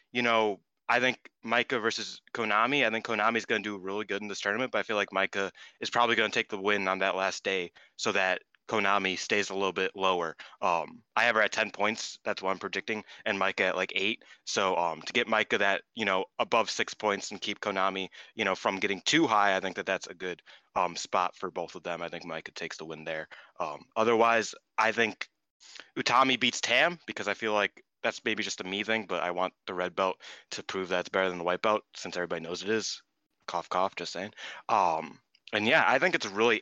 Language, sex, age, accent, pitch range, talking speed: English, male, 20-39, American, 95-110 Hz, 240 wpm